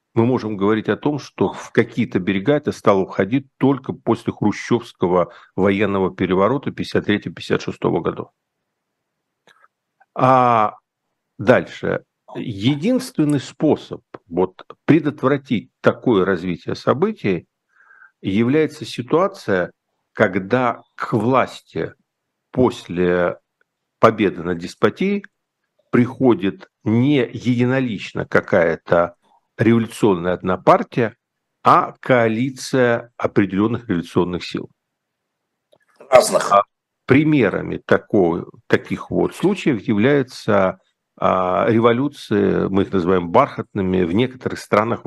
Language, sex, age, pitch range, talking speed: Russian, male, 50-69, 100-130 Hz, 85 wpm